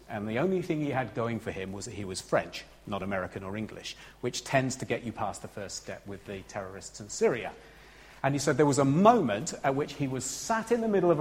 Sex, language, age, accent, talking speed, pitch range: male, English, 40-59, British, 255 wpm, 100-140 Hz